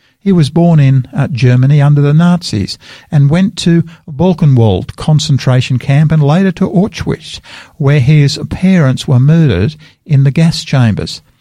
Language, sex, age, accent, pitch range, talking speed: English, male, 50-69, Australian, 125-165 Hz, 145 wpm